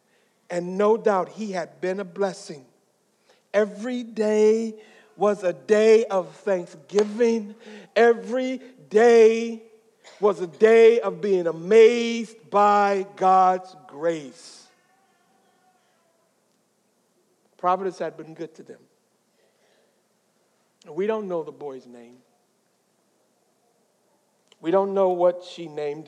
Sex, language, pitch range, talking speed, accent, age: male, English, 165-210 Hz, 100 wpm, American, 60-79